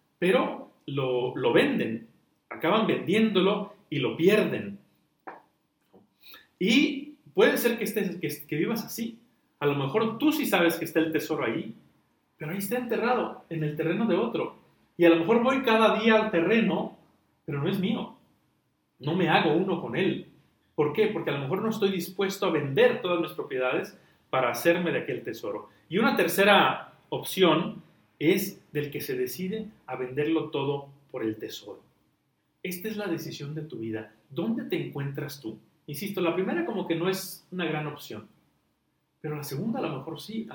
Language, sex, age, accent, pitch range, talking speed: Spanish, male, 40-59, Mexican, 150-210 Hz, 180 wpm